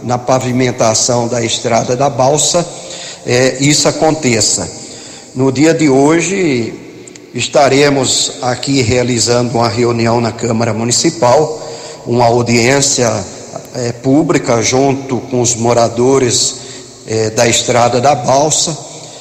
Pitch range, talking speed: 125-150 Hz, 105 wpm